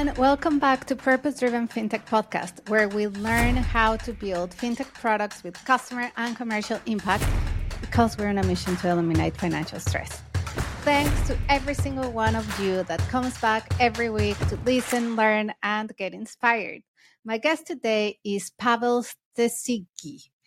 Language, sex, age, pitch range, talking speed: English, female, 30-49, 195-245 Hz, 155 wpm